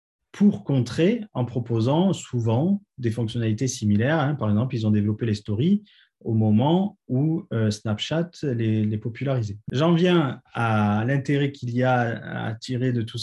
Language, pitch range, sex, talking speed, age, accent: French, 115-175 Hz, male, 145 wpm, 30-49, French